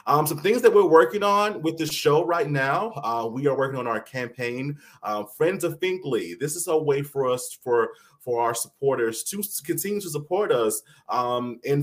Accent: American